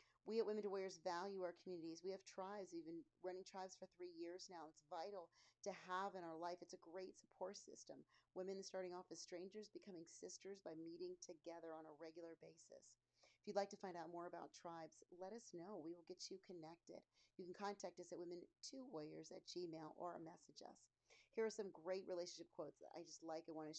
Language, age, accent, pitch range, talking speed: English, 40-59, American, 160-195 Hz, 215 wpm